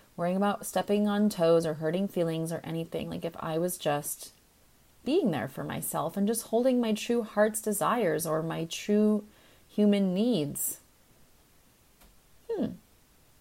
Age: 30-49